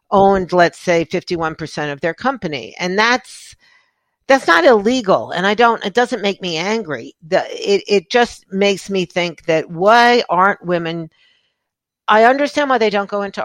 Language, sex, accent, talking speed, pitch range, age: English, female, American, 170 wpm, 155-215 Hz, 50-69